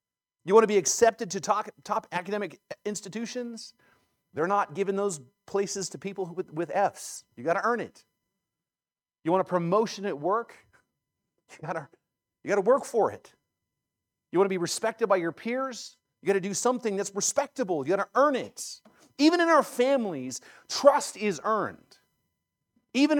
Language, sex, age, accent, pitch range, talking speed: English, male, 40-59, American, 165-225 Hz, 170 wpm